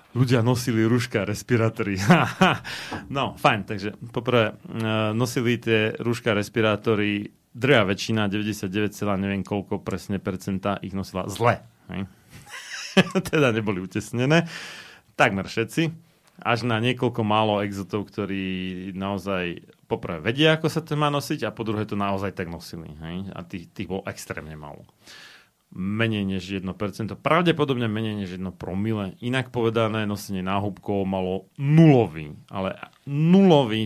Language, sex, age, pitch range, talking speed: Slovak, male, 30-49, 100-125 Hz, 125 wpm